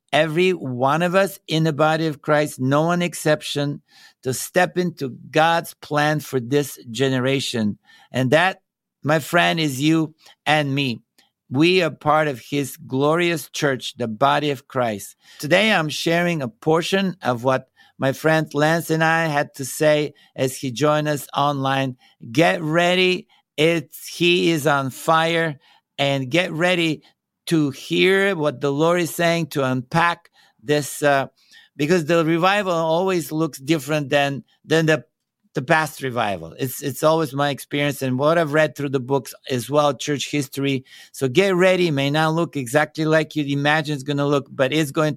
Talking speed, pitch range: 165 wpm, 140-170 Hz